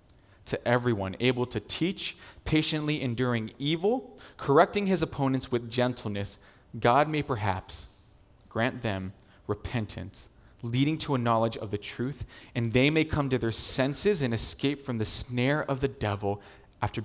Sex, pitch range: male, 100-130 Hz